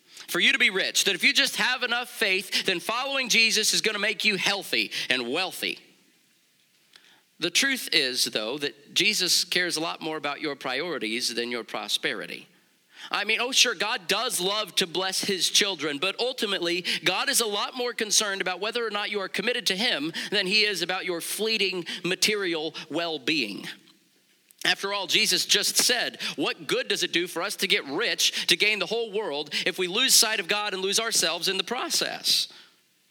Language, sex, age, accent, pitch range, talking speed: English, male, 40-59, American, 155-215 Hz, 195 wpm